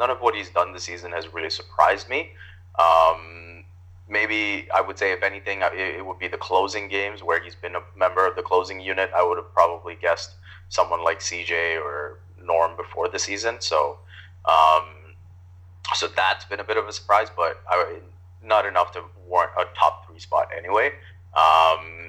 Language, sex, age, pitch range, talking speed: English, male, 20-39, 90-95 Hz, 180 wpm